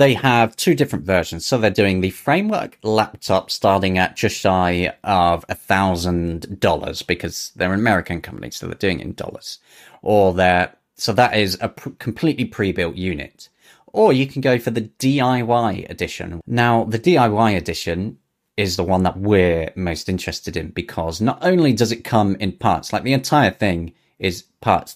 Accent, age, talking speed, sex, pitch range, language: British, 30-49, 180 wpm, male, 90-115 Hz, English